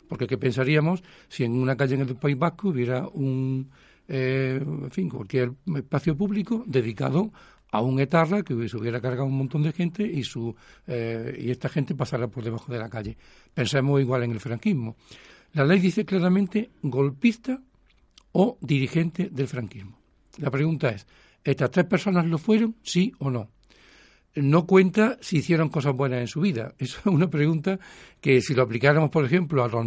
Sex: male